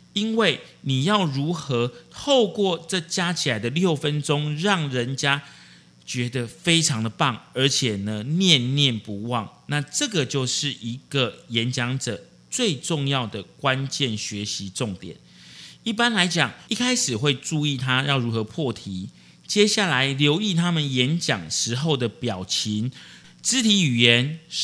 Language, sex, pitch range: Chinese, male, 120-170 Hz